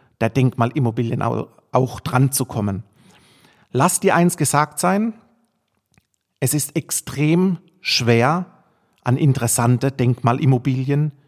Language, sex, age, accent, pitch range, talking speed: German, male, 40-59, German, 120-155 Hz, 95 wpm